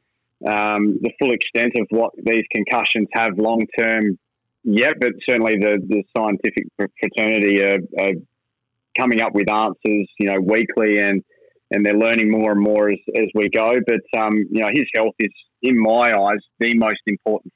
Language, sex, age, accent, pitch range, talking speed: English, male, 20-39, Australian, 105-120 Hz, 175 wpm